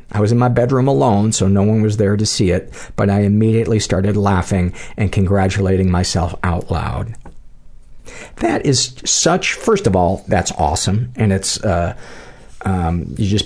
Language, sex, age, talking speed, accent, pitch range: English, male, 50-69, 170 wpm, American, 95-120 Hz